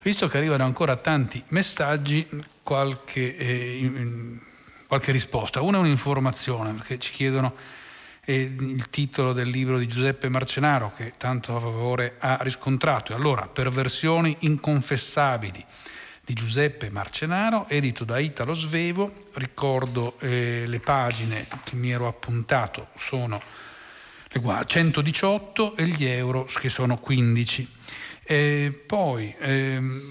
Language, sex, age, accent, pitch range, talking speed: Italian, male, 40-59, native, 125-150 Hz, 125 wpm